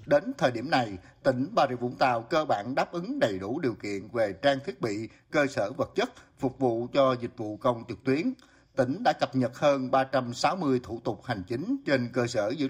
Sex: male